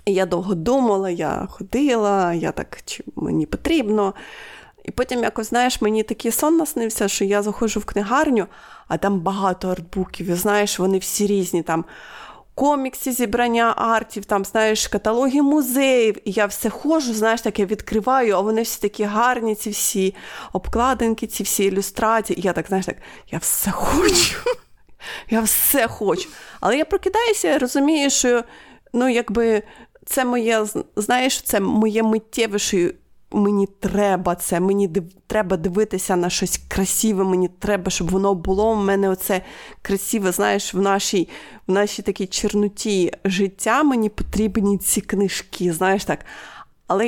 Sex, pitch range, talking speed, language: female, 195-240 Hz, 150 wpm, Ukrainian